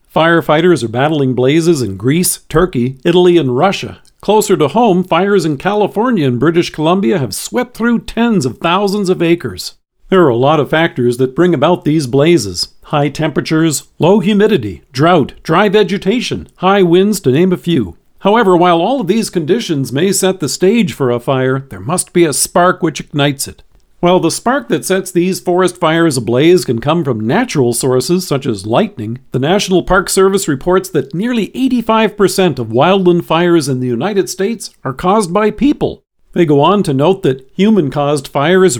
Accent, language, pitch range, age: American, English, 140-195 Hz, 50-69